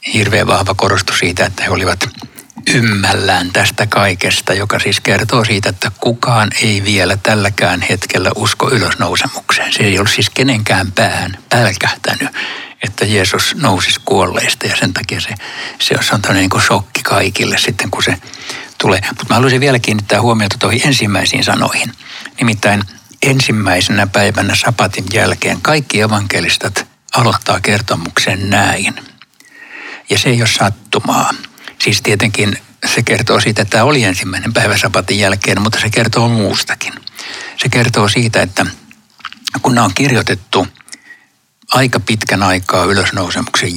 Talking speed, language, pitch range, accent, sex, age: 135 wpm, Finnish, 100-120 Hz, native, male, 60-79